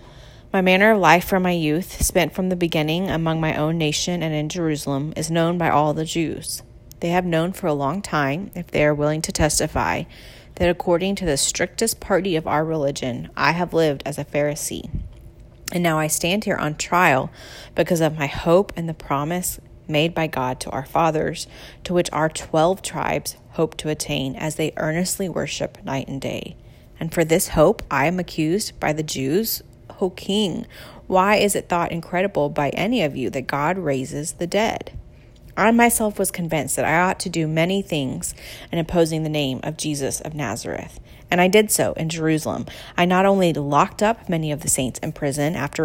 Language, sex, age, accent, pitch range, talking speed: English, female, 30-49, American, 145-175 Hz, 200 wpm